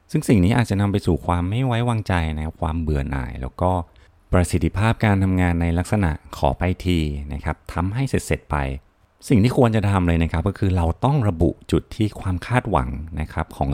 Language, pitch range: Thai, 75-95 Hz